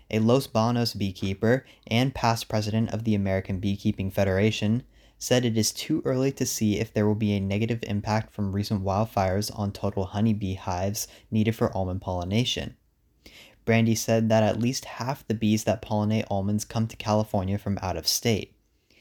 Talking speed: 175 wpm